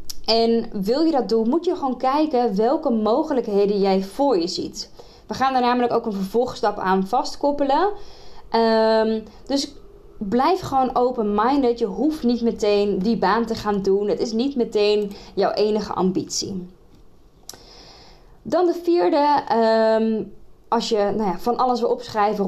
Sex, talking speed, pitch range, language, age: female, 140 wpm, 210-270 Hz, Dutch, 20-39